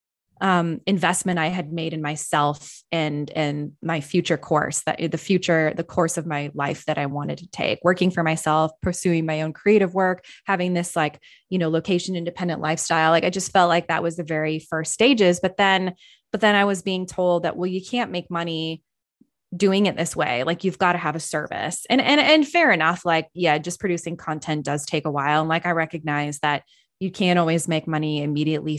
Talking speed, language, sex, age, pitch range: 210 wpm, English, female, 20-39, 155-185 Hz